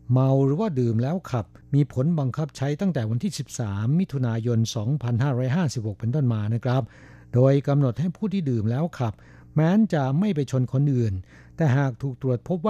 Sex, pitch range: male, 115-140 Hz